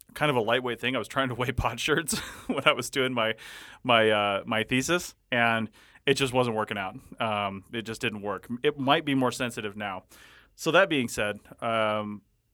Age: 30-49